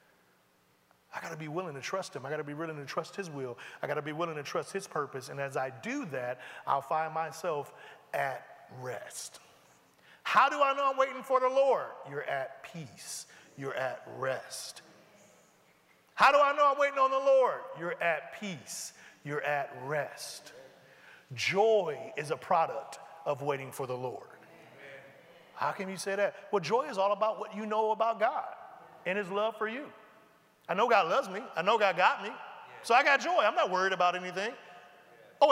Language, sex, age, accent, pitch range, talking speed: English, male, 40-59, American, 160-235 Hz, 195 wpm